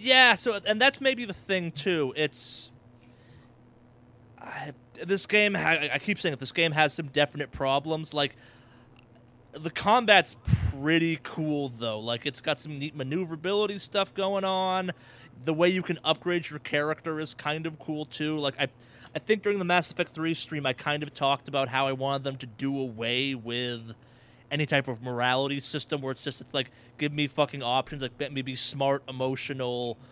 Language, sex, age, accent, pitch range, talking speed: English, male, 20-39, American, 125-160 Hz, 185 wpm